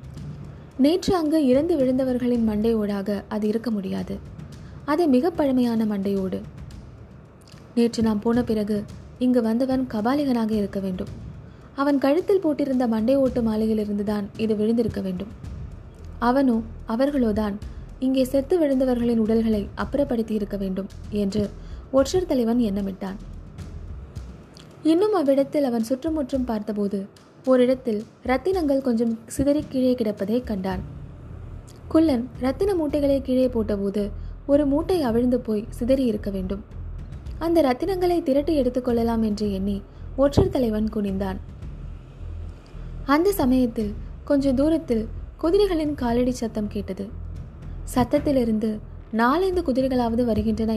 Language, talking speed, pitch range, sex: Tamil, 105 wpm, 210-275 Hz, female